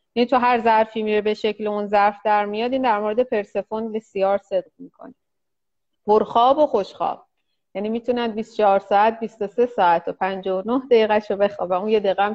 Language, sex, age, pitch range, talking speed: Persian, female, 30-49, 205-255 Hz, 175 wpm